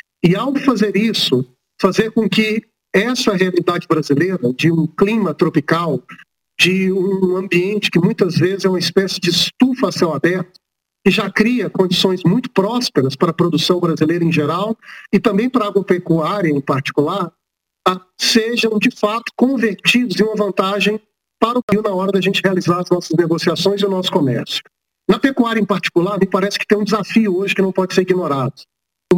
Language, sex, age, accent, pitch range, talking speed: Portuguese, male, 50-69, Brazilian, 175-210 Hz, 180 wpm